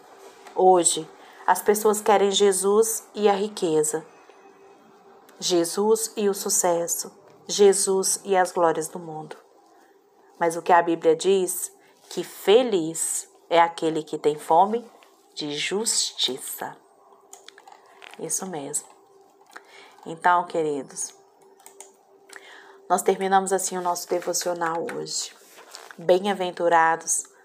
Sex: female